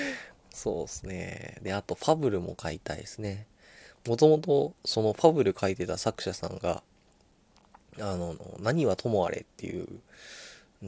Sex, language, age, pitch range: male, Japanese, 20-39, 85-135 Hz